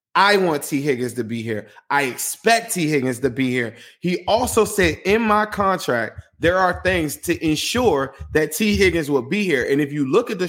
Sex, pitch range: male, 135-175 Hz